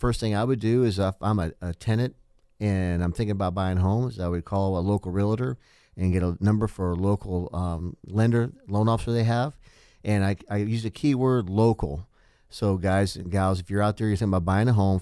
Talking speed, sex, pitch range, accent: 230 wpm, male, 90-110 Hz, American